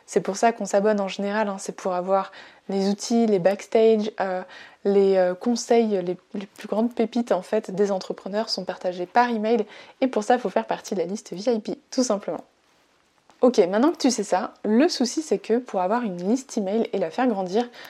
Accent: French